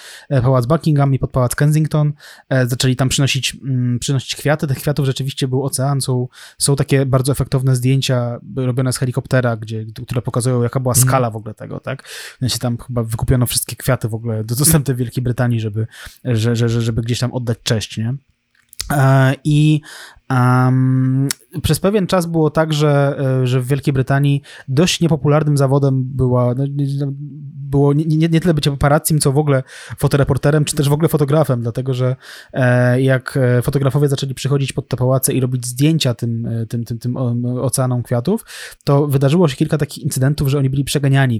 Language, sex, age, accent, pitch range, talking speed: Polish, male, 20-39, native, 125-145 Hz, 170 wpm